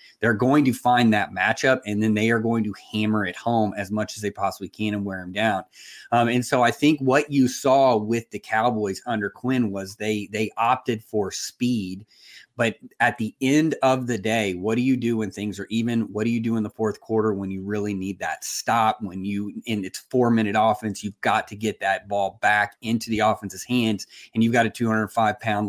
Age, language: 30-49, English